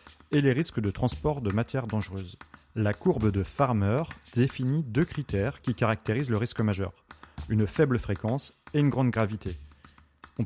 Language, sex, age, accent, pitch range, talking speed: French, male, 30-49, French, 100-130 Hz, 160 wpm